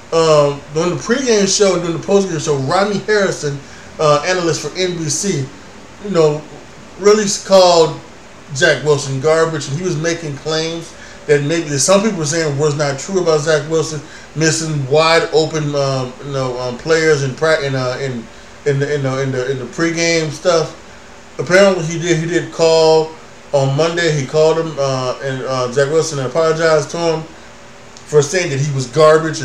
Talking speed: 180 wpm